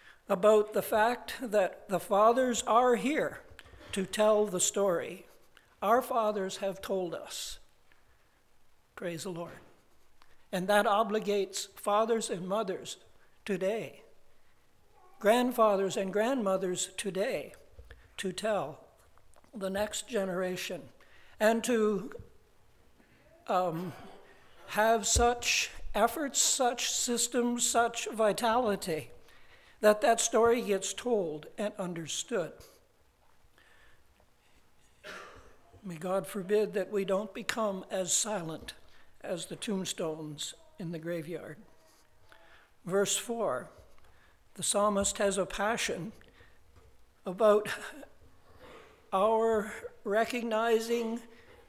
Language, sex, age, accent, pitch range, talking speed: English, male, 60-79, American, 195-230 Hz, 90 wpm